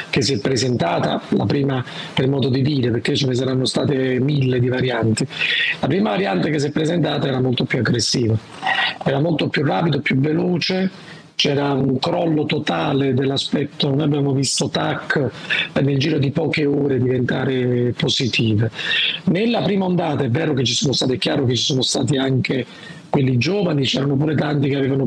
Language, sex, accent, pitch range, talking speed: Italian, male, native, 130-160 Hz, 175 wpm